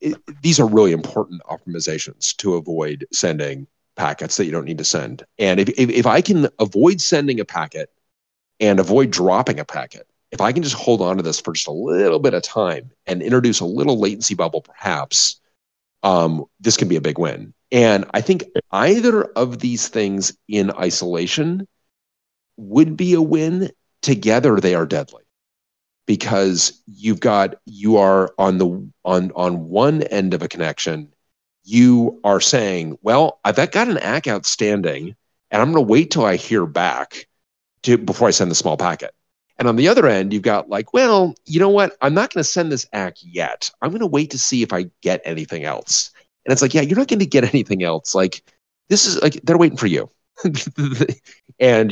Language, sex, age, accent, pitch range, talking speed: English, male, 40-59, American, 90-145 Hz, 190 wpm